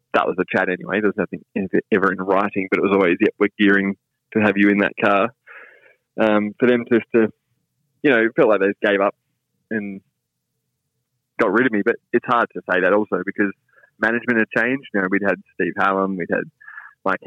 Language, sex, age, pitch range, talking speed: English, male, 20-39, 100-120 Hz, 215 wpm